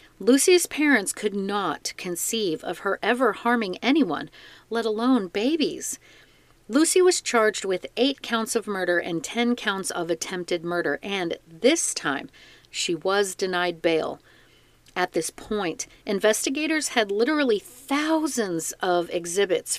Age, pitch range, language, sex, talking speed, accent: 40-59, 180-250 Hz, English, female, 130 wpm, American